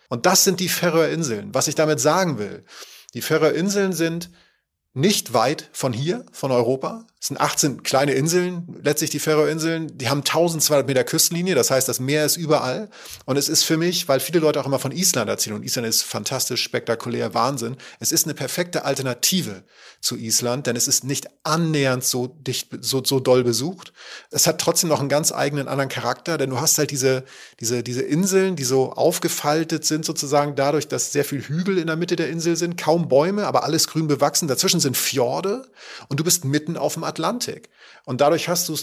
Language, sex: German, male